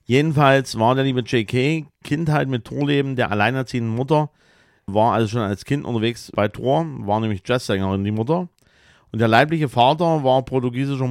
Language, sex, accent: German, male, German